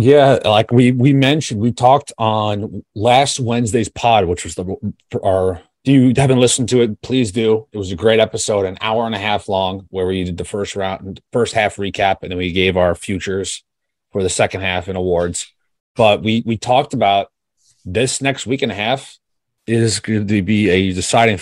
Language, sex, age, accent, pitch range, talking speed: English, male, 30-49, American, 95-130 Hz, 200 wpm